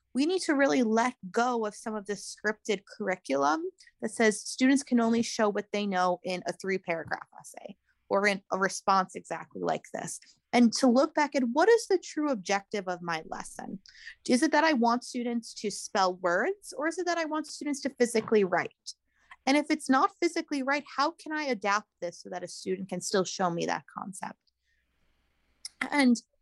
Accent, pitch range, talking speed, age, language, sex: American, 195-270 Hz, 200 wpm, 20-39, English, female